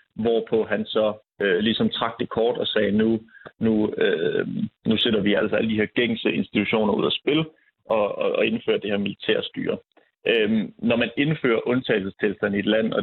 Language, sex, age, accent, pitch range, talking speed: Danish, male, 30-49, native, 105-130 Hz, 190 wpm